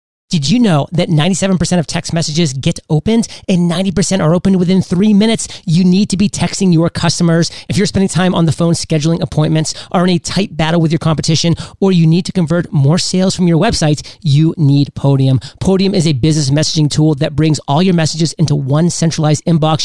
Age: 30-49